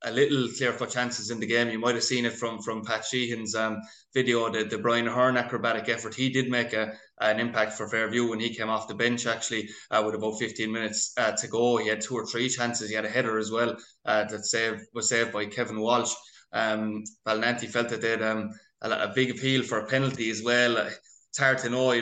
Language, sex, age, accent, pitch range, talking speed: English, male, 20-39, Irish, 115-125 Hz, 240 wpm